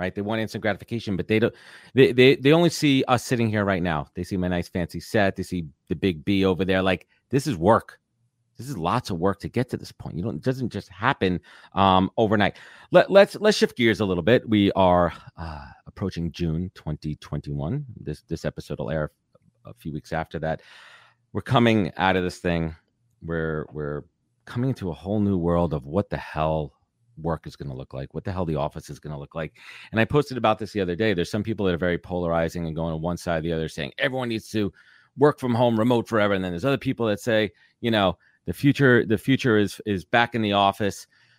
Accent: American